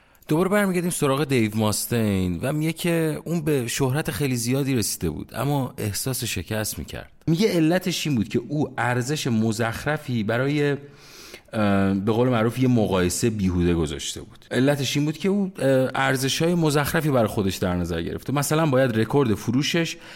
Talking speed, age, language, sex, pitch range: 155 wpm, 30-49, Persian, male, 100-145 Hz